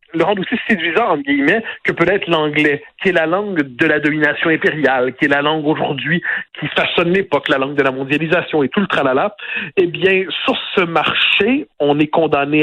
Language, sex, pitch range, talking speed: French, male, 140-195 Hz, 195 wpm